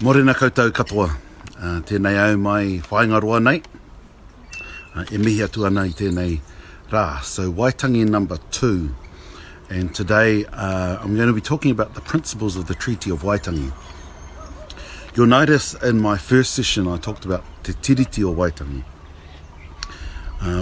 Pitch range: 80-105 Hz